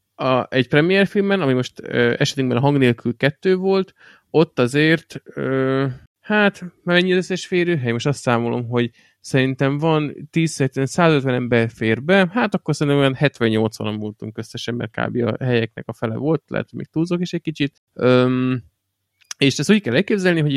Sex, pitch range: male, 115-140 Hz